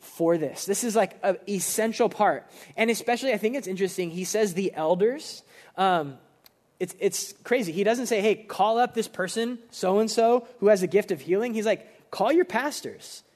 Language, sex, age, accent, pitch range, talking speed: English, male, 20-39, American, 170-215 Hz, 190 wpm